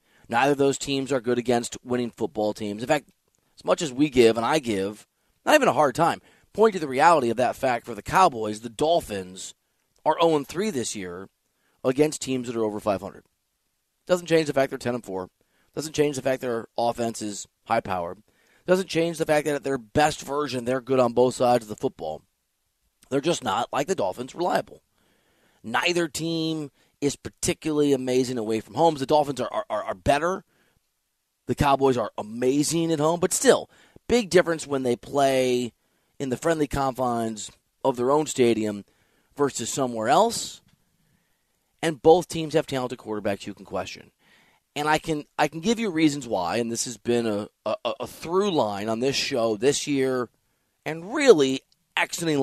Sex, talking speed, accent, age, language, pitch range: male, 185 wpm, American, 30-49, English, 115-155 Hz